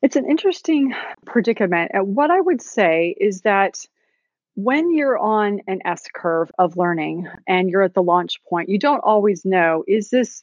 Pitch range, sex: 180-235 Hz, female